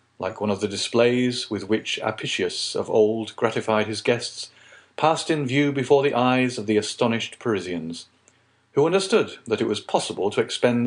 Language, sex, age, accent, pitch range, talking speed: English, male, 40-59, British, 110-155 Hz, 170 wpm